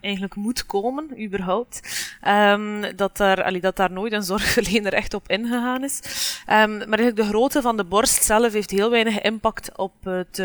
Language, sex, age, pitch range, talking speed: Dutch, female, 20-39, 180-215 Hz, 155 wpm